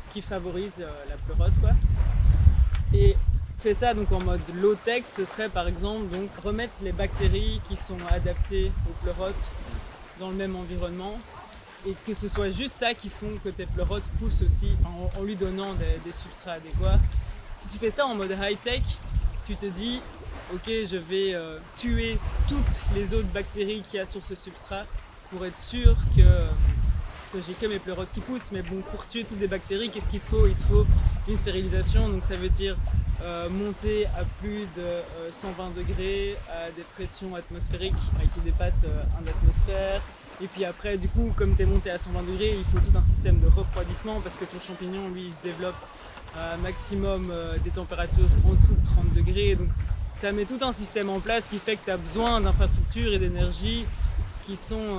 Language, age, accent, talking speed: French, 20-39, French, 195 wpm